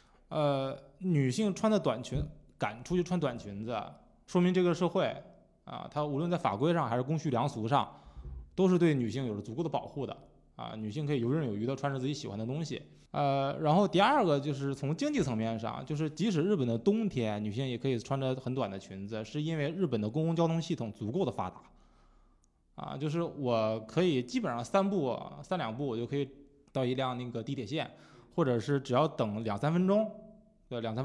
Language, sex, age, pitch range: Chinese, male, 20-39, 125-175 Hz